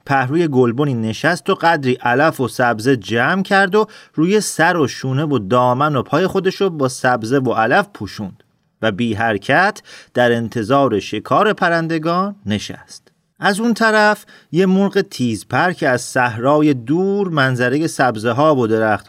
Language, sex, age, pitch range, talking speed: Persian, male, 40-59, 125-190 Hz, 155 wpm